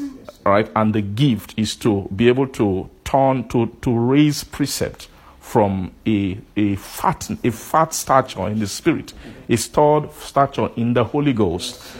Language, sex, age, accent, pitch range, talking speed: English, male, 50-69, Nigerian, 105-135 Hz, 155 wpm